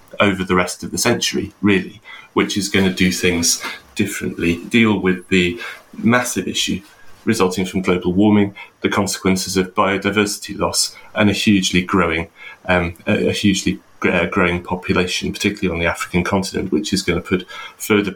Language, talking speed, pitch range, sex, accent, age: English, 160 wpm, 90-100 Hz, male, British, 30-49